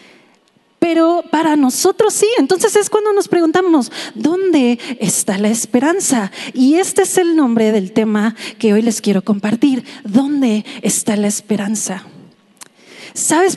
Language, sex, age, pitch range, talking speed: Spanish, female, 30-49, 240-330 Hz, 135 wpm